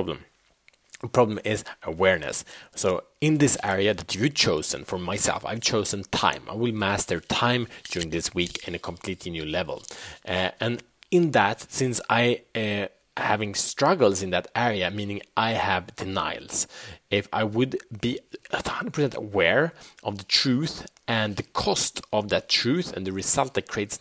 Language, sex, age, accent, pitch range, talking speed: Swedish, male, 30-49, Norwegian, 90-115 Hz, 160 wpm